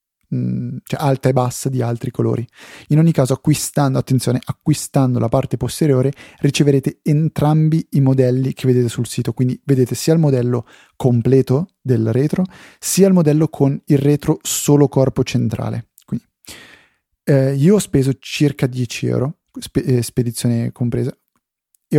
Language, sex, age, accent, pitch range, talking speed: Italian, male, 30-49, native, 125-145 Hz, 140 wpm